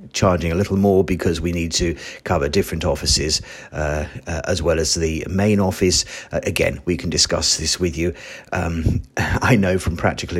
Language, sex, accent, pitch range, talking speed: English, male, British, 80-95 Hz, 185 wpm